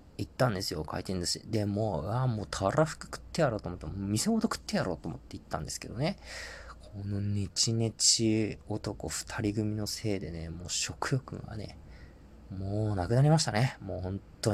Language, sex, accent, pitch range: Japanese, male, native, 85-120 Hz